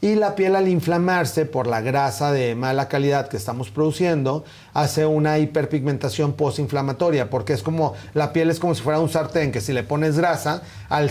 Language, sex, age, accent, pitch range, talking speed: Spanish, male, 40-59, Mexican, 130-155 Hz, 190 wpm